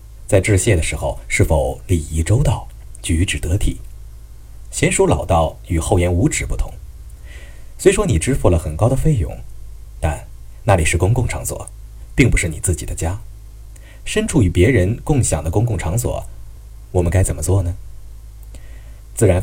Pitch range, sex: 85-110 Hz, male